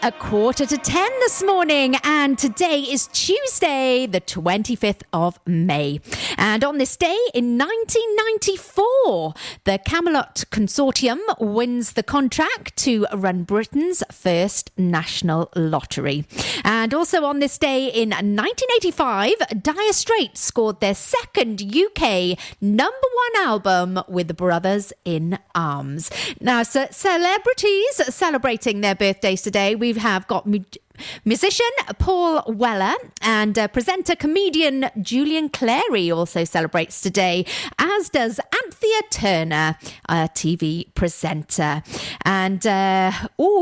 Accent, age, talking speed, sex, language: British, 40-59, 115 wpm, female, English